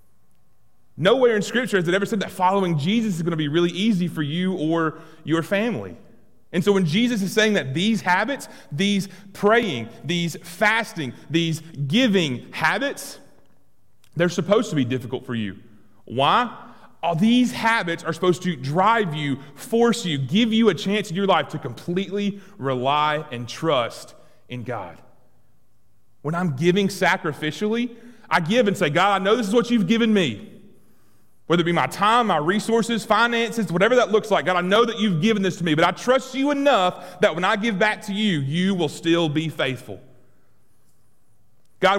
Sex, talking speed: male, 175 wpm